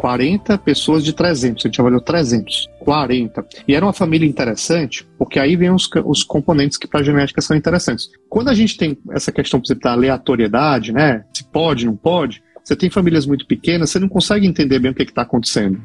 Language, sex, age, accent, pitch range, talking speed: Portuguese, male, 40-59, Brazilian, 125-180 Hz, 215 wpm